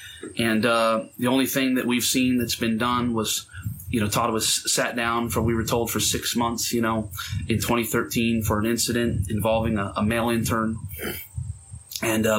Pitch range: 110-125 Hz